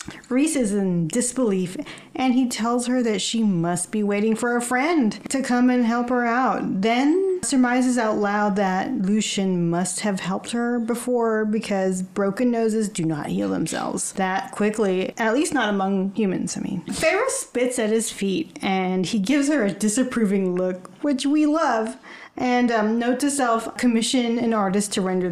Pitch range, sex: 185-250 Hz, female